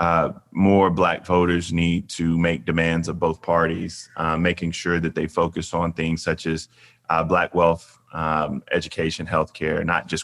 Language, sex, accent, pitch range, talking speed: English, male, American, 80-95 Hz, 170 wpm